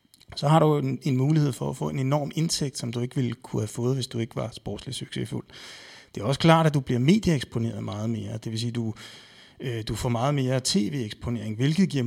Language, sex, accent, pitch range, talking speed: Danish, male, native, 115-150 Hz, 245 wpm